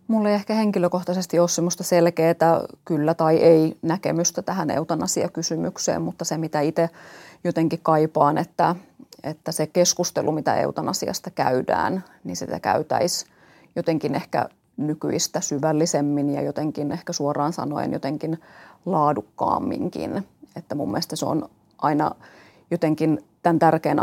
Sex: female